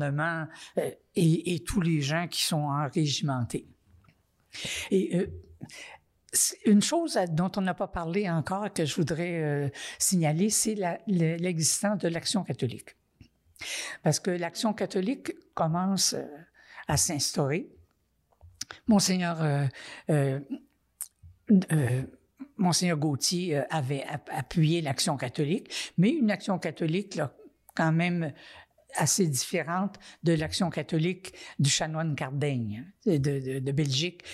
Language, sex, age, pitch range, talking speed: French, female, 60-79, 150-195 Hz, 115 wpm